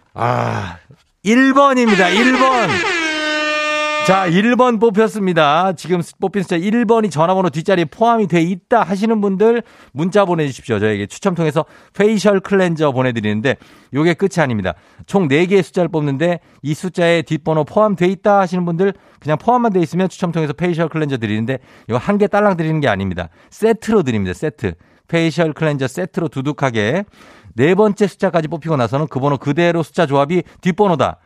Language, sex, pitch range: Korean, male, 120-190 Hz